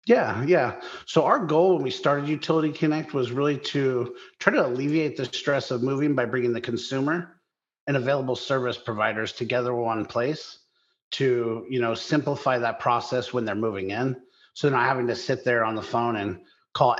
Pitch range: 115-130 Hz